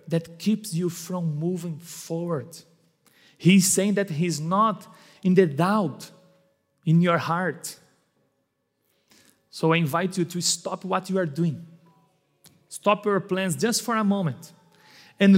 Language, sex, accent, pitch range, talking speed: English, male, Brazilian, 155-185 Hz, 135 wpm